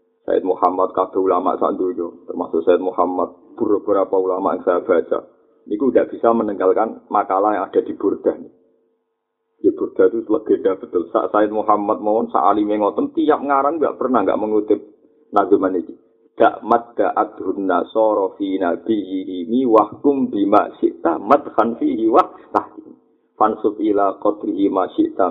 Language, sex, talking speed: Indonesian, male, 150 wpm